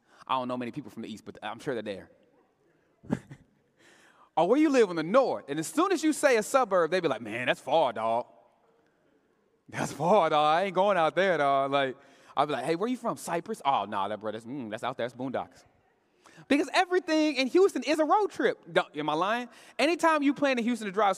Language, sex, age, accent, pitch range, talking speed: English, male, 30-49, American, 160-265 Hz, 240 wpm